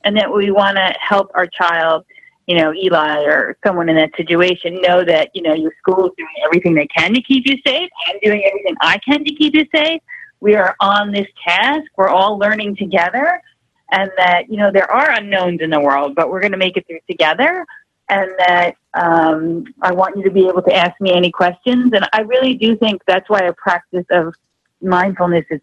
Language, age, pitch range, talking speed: English, 40-59, 165-210 Hz, 220 wpm